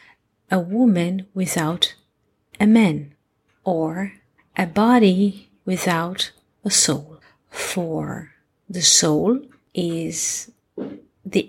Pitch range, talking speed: 165-210 Hz, 85 wpm